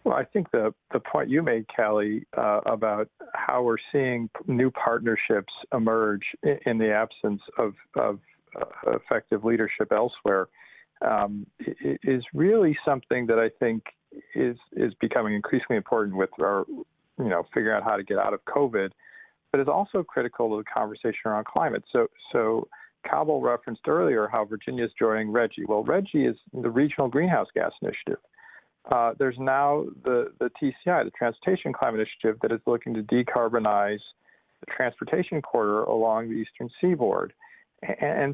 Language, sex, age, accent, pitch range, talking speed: English, male, 50-69, American, 115-150 Hz, 160 wpm